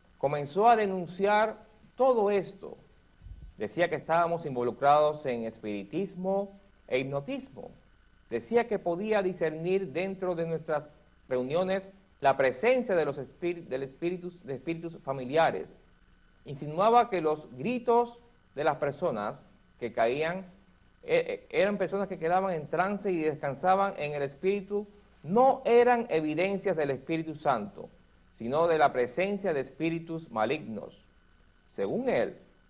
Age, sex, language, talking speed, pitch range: 50-69, male, Spanish, 120 wpm, 140-195 Hz